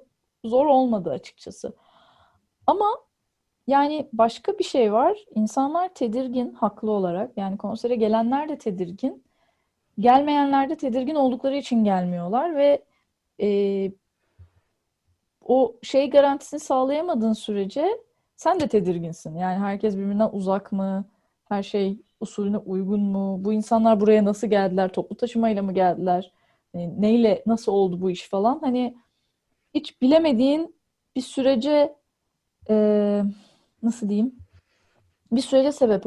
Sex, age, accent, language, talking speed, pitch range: female, 10-29, native, Turkish, 115 wpm, 195-270 Hz